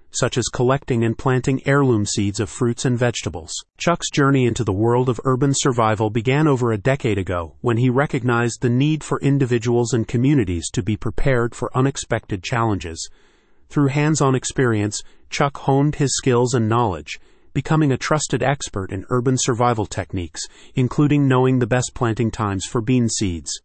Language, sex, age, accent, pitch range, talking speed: English, male, 30-49, American, 110-135 Hz, 165 wpm